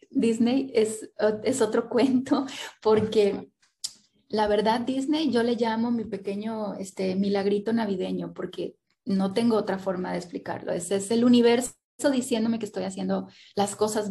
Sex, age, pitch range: female, 30-49, 195-230 Hz